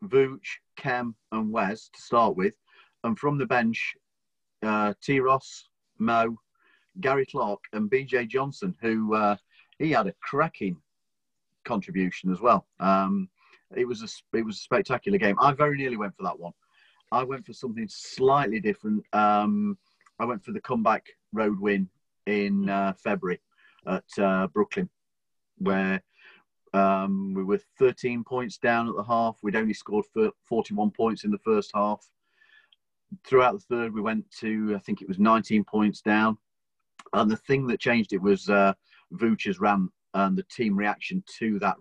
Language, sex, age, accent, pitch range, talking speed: English, male, 40-59, British, 100-135 Hz, 160 wpm